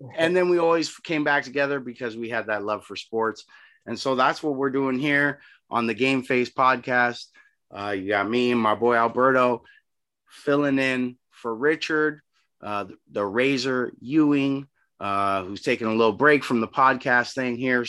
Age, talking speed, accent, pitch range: 30-49, 180 wpm, American, 110-150 Hz